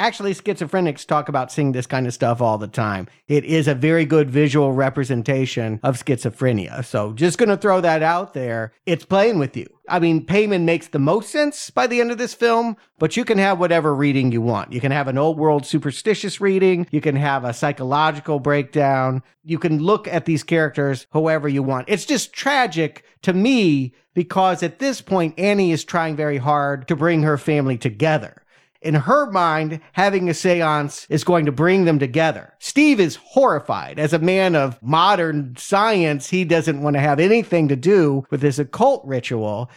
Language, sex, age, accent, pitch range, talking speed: English, male, 50-69, American, 145-190 Hz, 195 wpm